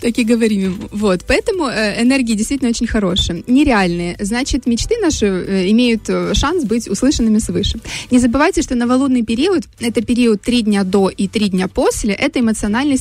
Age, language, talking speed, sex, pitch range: 20-39, Russian, 165 wpm, female, 200-250 Hz